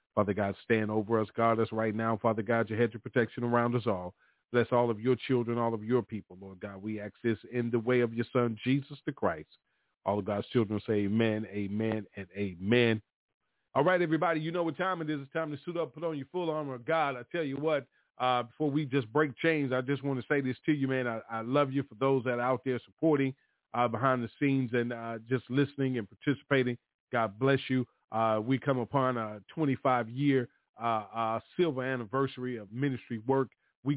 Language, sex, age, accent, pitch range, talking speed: English, male, 40-59, American, 115-135 Hz, 220 wpm